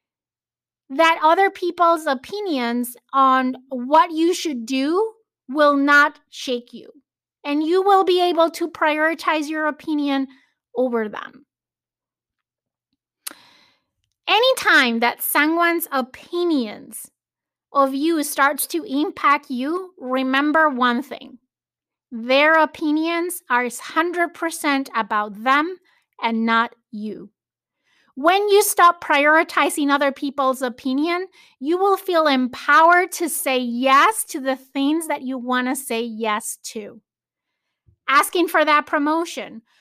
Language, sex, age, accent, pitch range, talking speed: English, female, 30-49, American, 260-335 Hz, 110 wpm